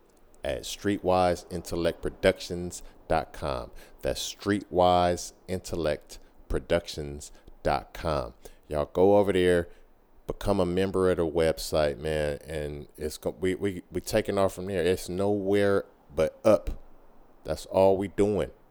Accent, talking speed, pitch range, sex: American, 105 wpm, 75-95 Hz, male